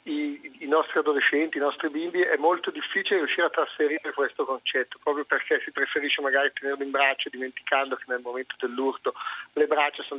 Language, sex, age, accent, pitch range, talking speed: Italian, male, 40-59, native, 135-165 Hz, 185 wpm